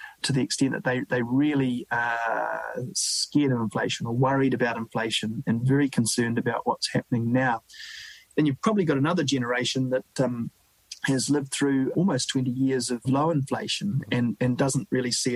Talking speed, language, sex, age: 170 wpm, English, male, 30-49